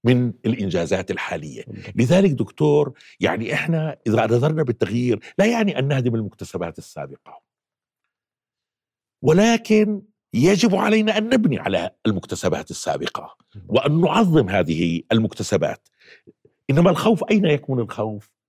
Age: 60-79